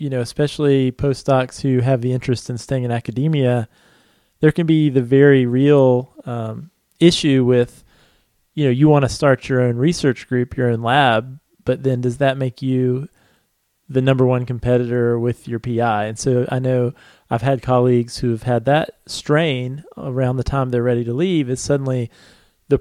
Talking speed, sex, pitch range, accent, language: 180 wpm, male, 120-140 Hz, American, English